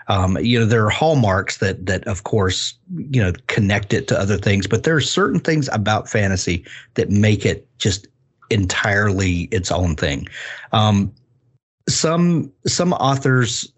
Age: 40-59